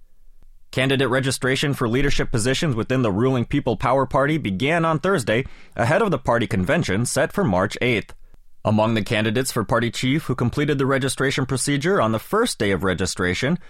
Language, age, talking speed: English, 30-49, 175 wpm